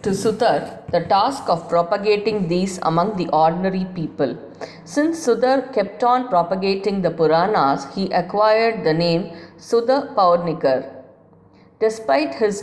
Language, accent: English, Indian